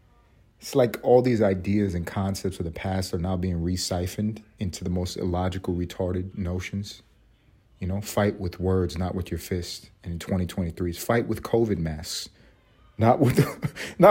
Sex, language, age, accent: male, English, 30-49, American